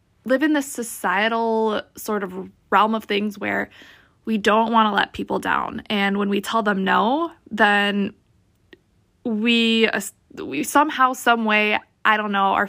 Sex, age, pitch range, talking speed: female, 20-39, 205-260 Hz, 155 wpm